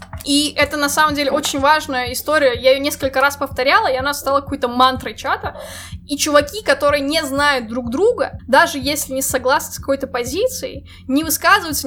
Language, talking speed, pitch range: Russian, 175 wpm, 250-310 Hz